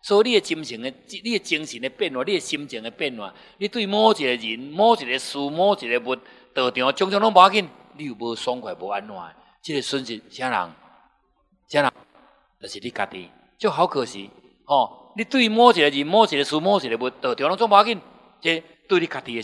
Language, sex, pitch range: Chinese, male, 120-185 Hz